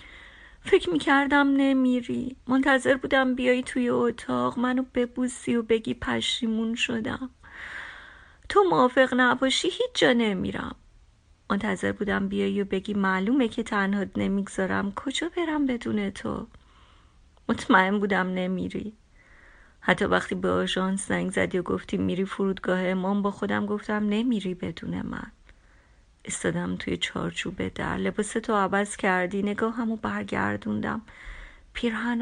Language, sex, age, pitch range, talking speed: Persian, female, 30-49, 180-240 Hz, 120 wpm